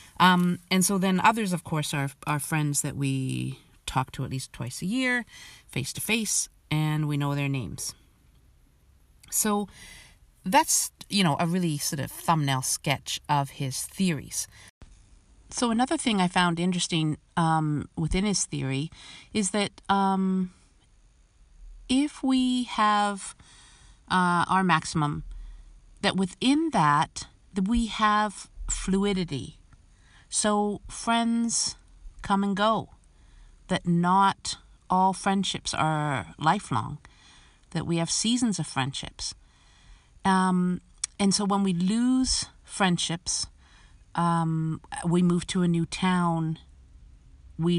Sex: female